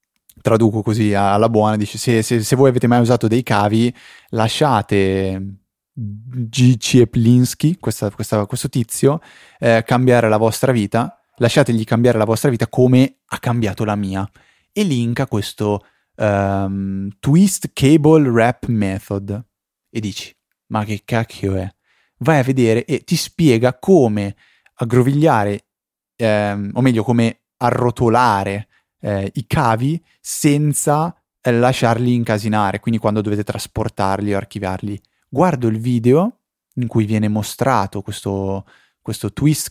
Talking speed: 125 wpm